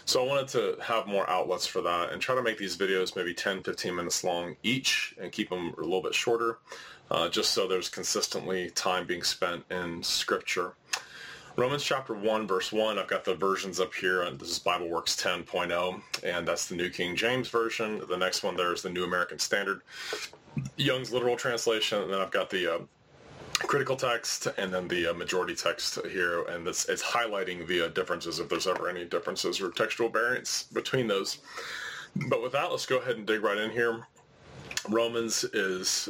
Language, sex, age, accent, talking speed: English, male, 30-49, American, 195 wpm